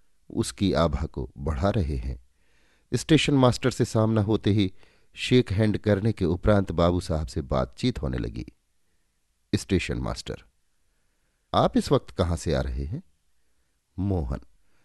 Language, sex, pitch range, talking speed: Hindi, male, 75-115 Hz, 135 wpm